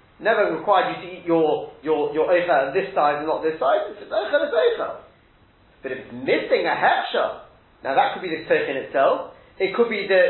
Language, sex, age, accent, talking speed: English, male, 30-49, British, 240 wpm